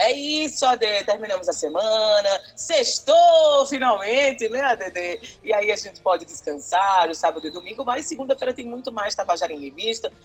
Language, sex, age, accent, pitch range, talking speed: Portuguese, female, 20-39, Brazilian, 190-265 Hz, 165 wpm